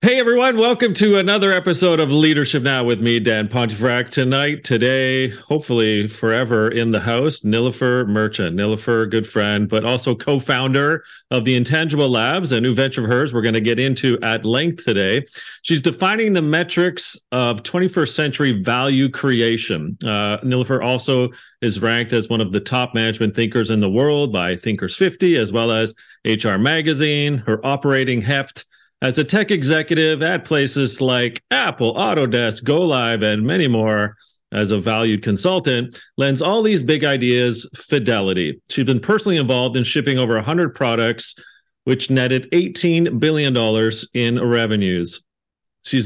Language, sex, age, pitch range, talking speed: English, male, 40-59, 115-150 Hz, 155 wpm